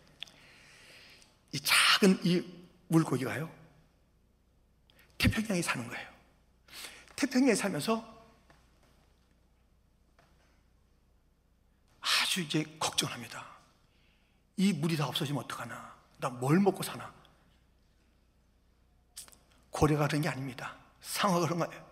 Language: Korean